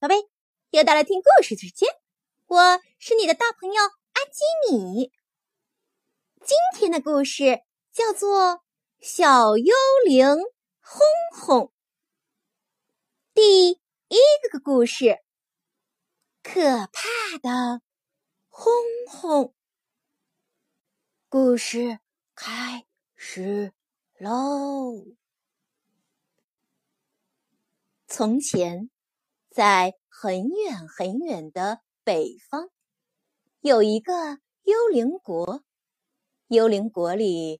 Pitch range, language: 225-360 Hz, Chinese